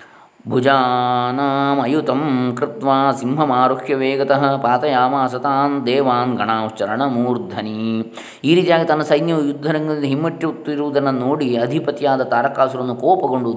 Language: Kannada